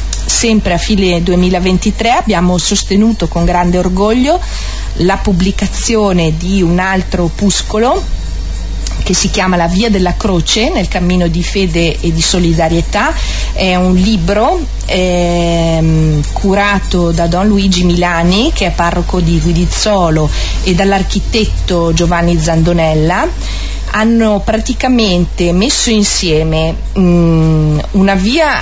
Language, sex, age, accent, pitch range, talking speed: Italian, female, 40-59, native, 165-200 Hz, 110 wpm